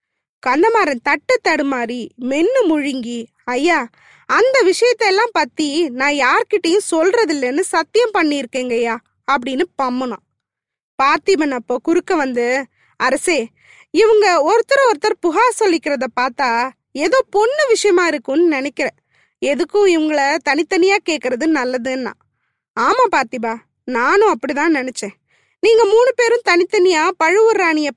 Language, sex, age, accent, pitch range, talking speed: Tamil, female, 20-39, native, 280-405 Hz, 105 wpm